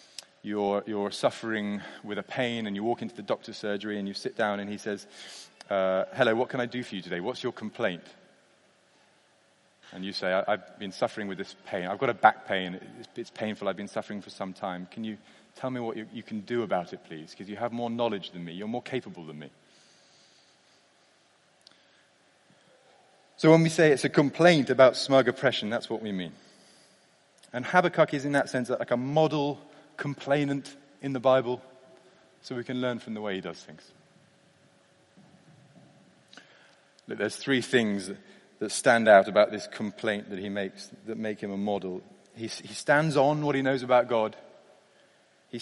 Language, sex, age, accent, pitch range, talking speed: English, male, 30-49, British, 100-130 Hz, 190 wpm